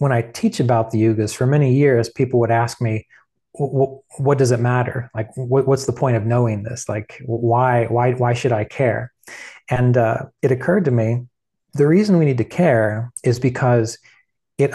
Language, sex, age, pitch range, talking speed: English, male, 30-49, 115-135 Hz, 205 wpm